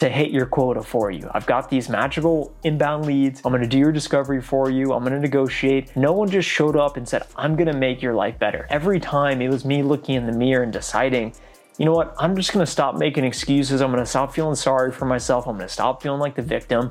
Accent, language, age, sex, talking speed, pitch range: American, English, 30-49, male, 245 wpm, 125-155 Hz